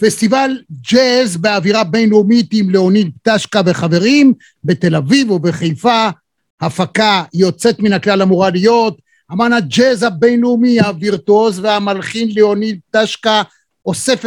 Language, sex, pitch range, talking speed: Hebrew, male, 190-235 Hz, 105 wpm